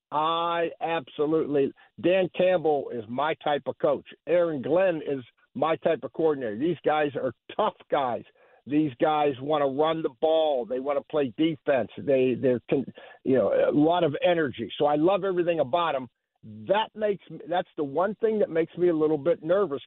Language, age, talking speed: English, 60-79, 180 wpm